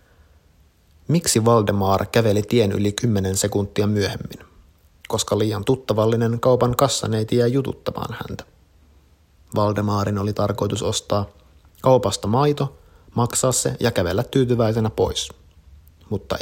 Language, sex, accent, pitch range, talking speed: Finnish, male, native, 80-115 Hz, 105 wpm